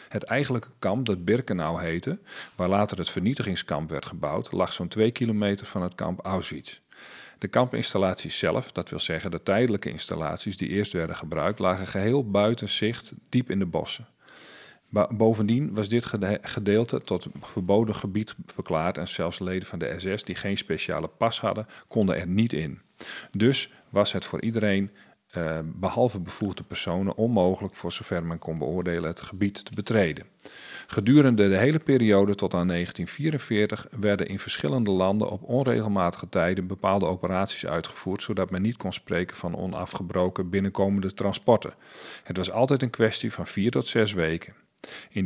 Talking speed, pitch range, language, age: 160 wpm, 90-110 Hz, Dutch, 40-59